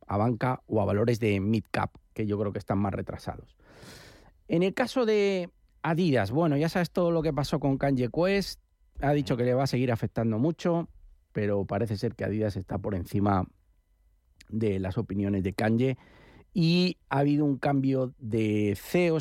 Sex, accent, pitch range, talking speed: male, Spanish, 110-160 Hz, 180 wpm